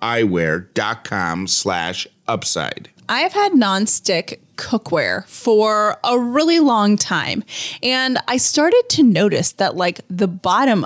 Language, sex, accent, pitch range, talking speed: English, female, American, 190-250 Hz, 120 wpm